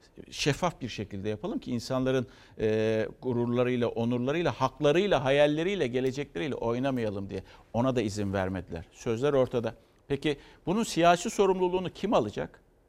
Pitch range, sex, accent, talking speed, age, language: 115-170 Hz, male, native, 120 wpm, 60-79, Turkish